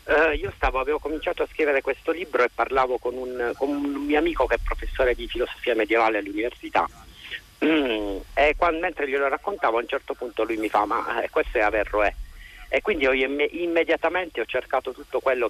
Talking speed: 200 wpm